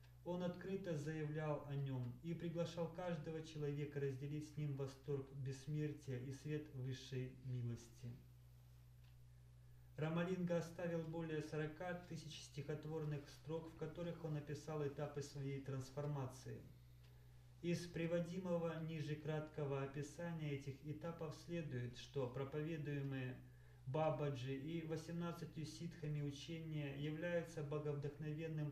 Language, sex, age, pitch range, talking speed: Russian, male, 30-49, 130-160 Hz, 100 wpm